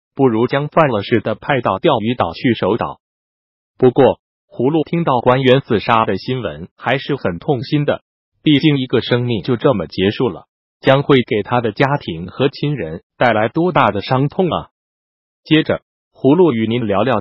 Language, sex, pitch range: Chinese, male, 110-150 Hz